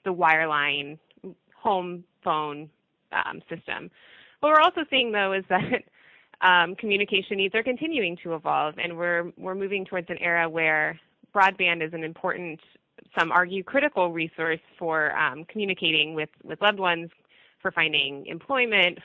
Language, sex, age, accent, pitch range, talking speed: English, female, 20-39, American, 165-195 Hz, 145 wpm